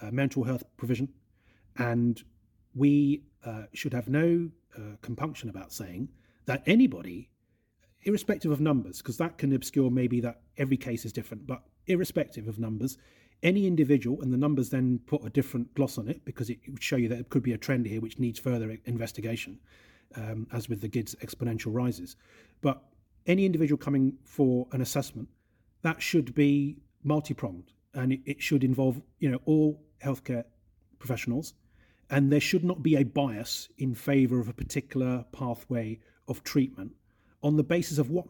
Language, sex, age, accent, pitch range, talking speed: English, male, 30-49, British, 115-140 Hz, 170 wpm